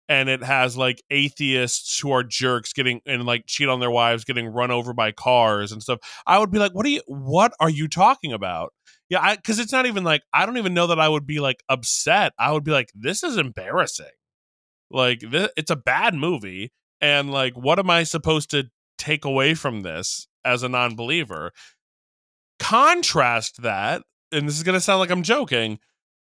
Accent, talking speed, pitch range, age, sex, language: American, 195 wpm, 125-175 Hz, 20-39, male, English